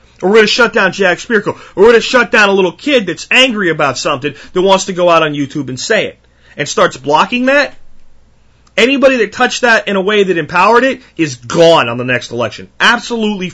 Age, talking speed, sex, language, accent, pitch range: 30-49, 230 wpm, male, English, American, 140-215 Hz